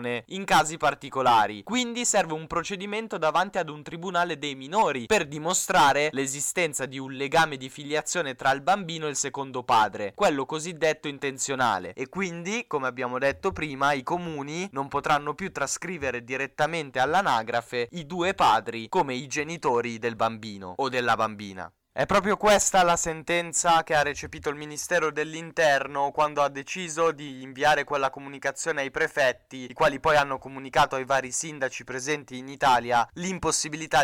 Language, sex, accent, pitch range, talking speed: Italian, male, native, 130-160 Hz, 155 wpm